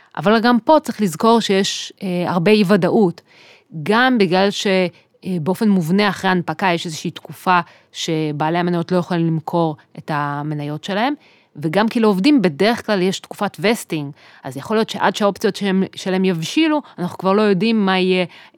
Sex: female